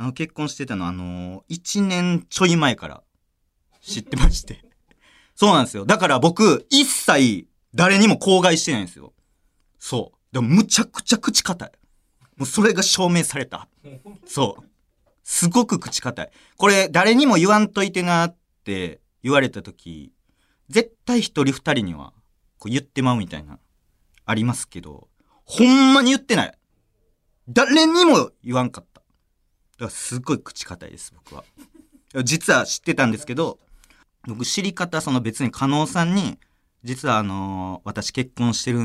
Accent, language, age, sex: native, Japanese, 40-59, male